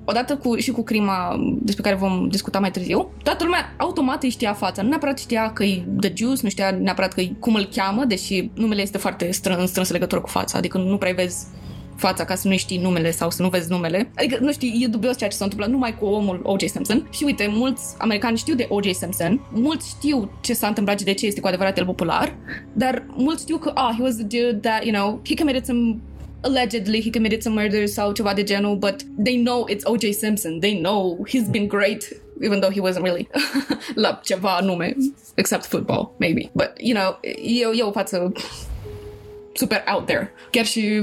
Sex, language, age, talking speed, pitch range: female, Romanian, 20-39, 220 wpm, 190-240 Hz